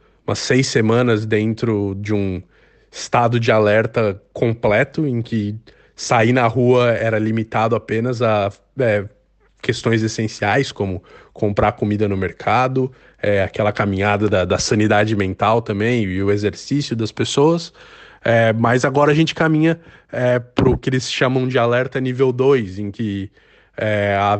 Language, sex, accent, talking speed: Portuguese, male, Brazilian, 135 wpm